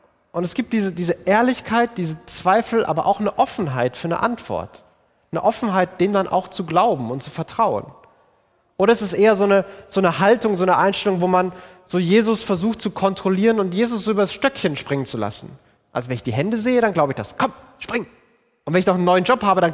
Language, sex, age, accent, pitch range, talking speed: German, male, 30-49, German, 145-215 Hz, 220 wpm